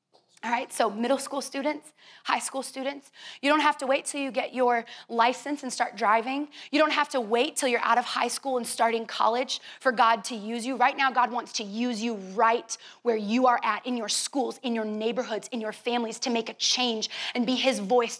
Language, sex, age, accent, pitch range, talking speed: English, female, 20-39, American, 235-280 Hz, 230 wpm